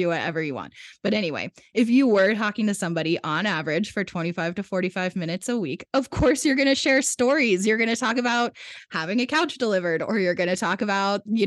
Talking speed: 230 wpm